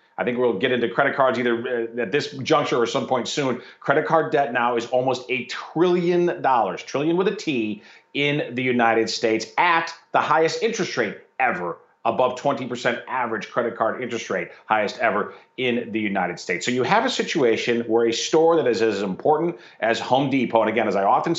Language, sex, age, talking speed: English, male, 40-59, 200 wpm